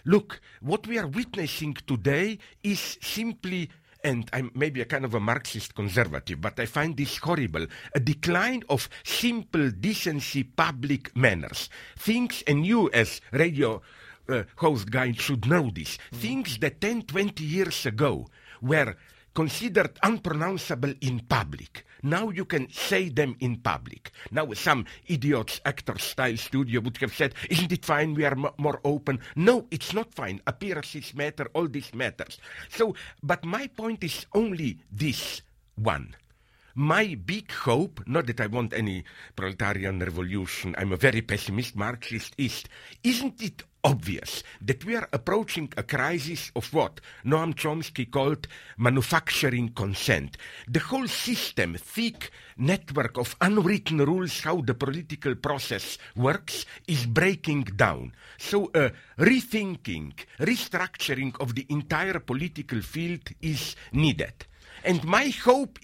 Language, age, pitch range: English, 50-69, 120-175 Hz